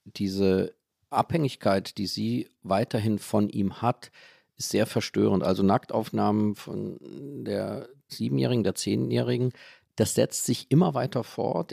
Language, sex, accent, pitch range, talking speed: German, male, German, 120-150 Hz, 125 wpm